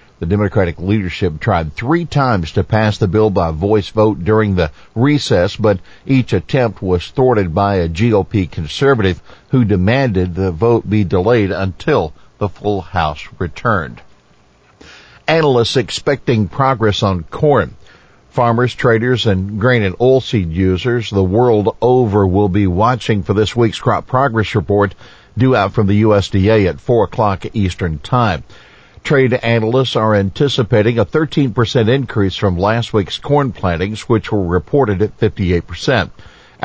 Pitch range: 95-120 Hz